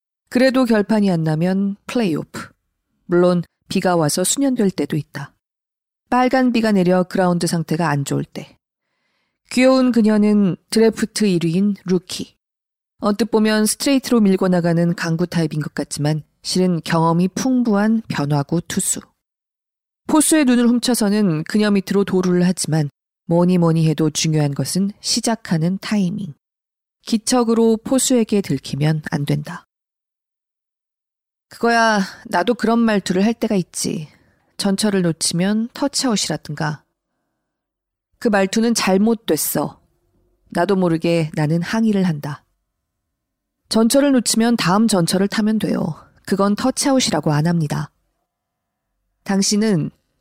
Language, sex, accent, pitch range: Korean, female, native, 170-225 Hz